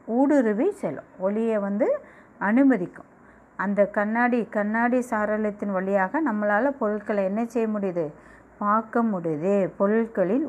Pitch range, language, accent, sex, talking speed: 195-260 Hz, Tamil, native, female, 105 wpm